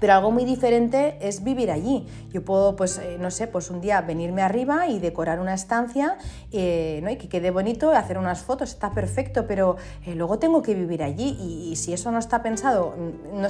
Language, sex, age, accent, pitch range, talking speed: Spanish, female, 30-49, Spanish, 170-220 Hz, 210 wpm